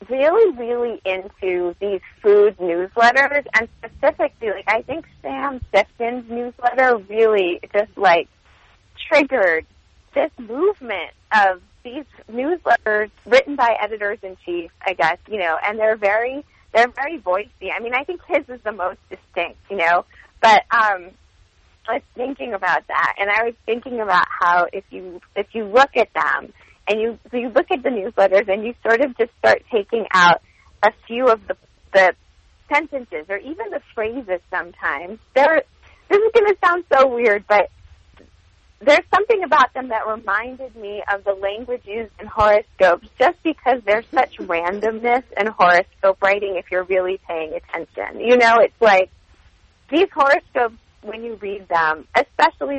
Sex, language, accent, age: female, English, American, 30-49